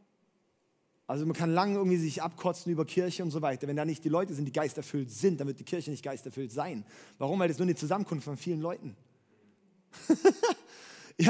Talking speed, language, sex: 200 wpm, German, male